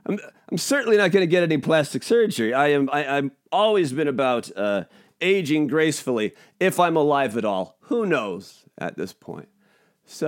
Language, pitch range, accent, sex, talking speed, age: English, 145-215 Hz, American, male, 175 wpm, 40-59